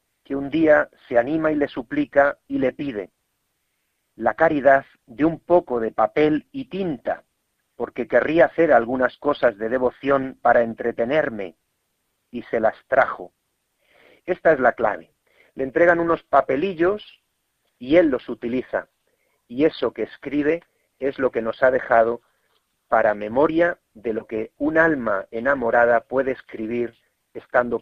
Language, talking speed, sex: Spanish, 140 wpm, male